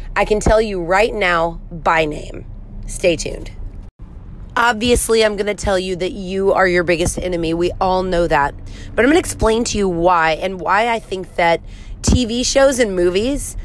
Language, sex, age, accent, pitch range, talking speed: English, female, 30-49, American, 165-230 Hz, 190 wpm